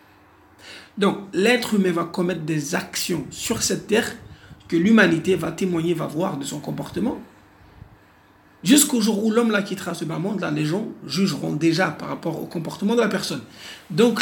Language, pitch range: English, 160-210 Hz